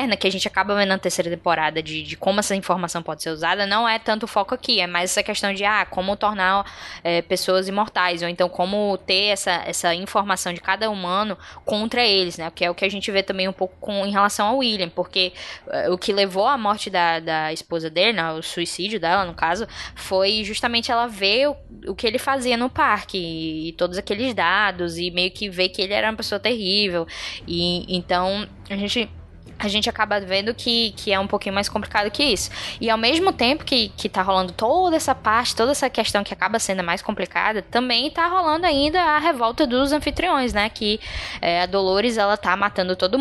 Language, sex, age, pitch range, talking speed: Portuguese, female, 10-29, 180-220 Hz, 215 wpm